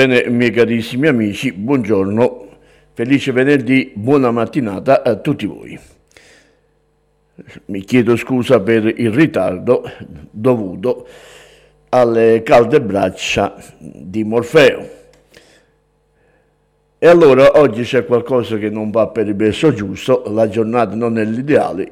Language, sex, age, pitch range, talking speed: Italian, male, 60-79, 115-150 Hz, 110 wpm